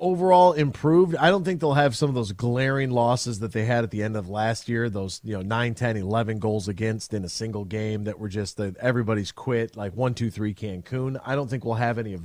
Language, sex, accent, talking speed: English, male, American, 235 wpm